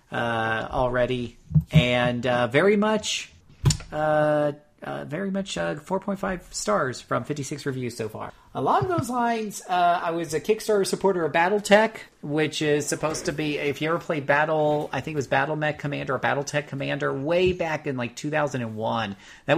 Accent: American